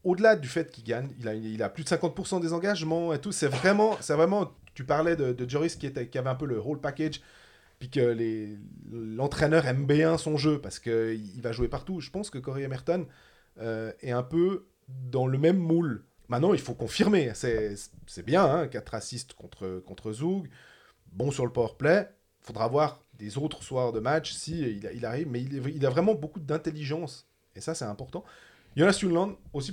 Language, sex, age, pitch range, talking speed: French, male, 30-49, 120-160 Hz, 210 wpm